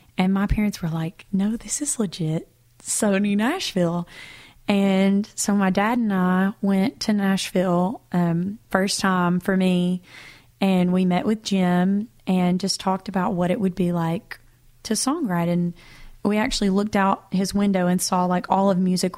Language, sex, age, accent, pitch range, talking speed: English, female, 30-49, American, 180-210 Hz, 170 wpm